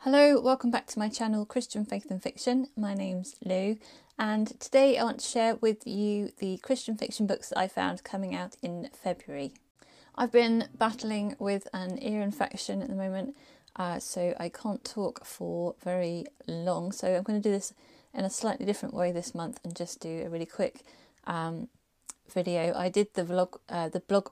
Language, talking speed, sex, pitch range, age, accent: English, 190 wpm, female, 175-225 Hz, 30-49, British